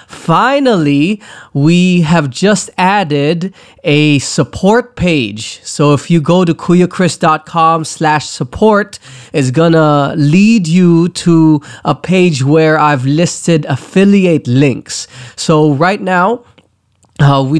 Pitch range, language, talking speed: 130-160 Hz, English, 110 wpm